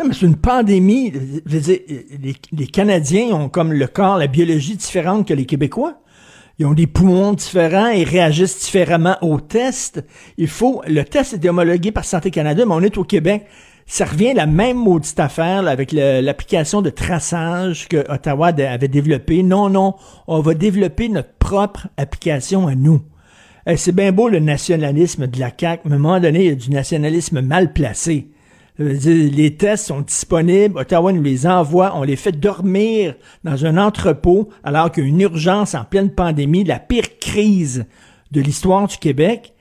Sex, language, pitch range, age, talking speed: male, French, 150-195 Hz, 60-79, 180 wpm